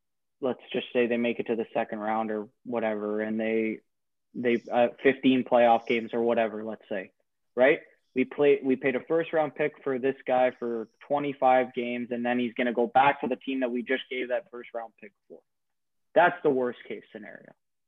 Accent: American